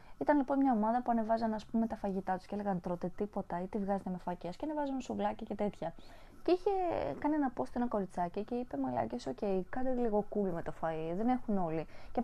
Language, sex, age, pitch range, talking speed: Greek, female, 20-39, 175-230 Hz, 215 wpm